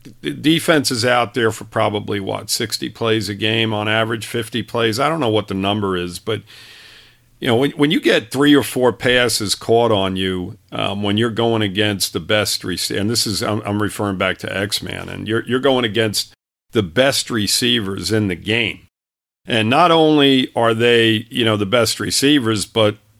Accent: American